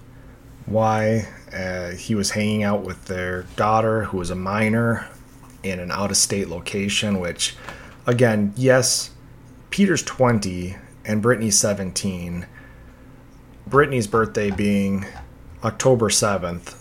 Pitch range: 100-125 Hz